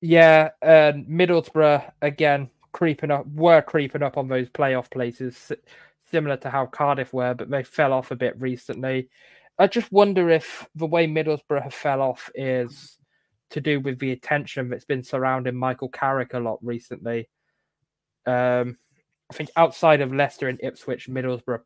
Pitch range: 125-150 Hz